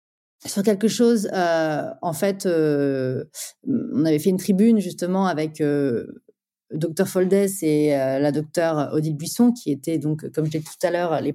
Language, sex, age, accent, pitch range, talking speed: French, female, 30-49, French, 155-215 Hz, 185 wpm